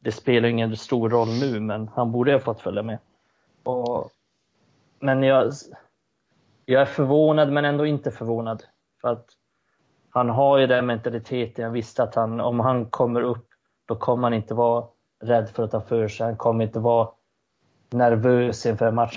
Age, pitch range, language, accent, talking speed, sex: 20-39, 115-130 Hz, Swedish, native, 180 wpm, male